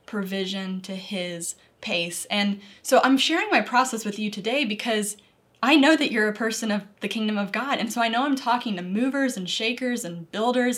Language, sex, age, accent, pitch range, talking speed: English, female, 10-29, American, 200-250 Hz, 205 wpm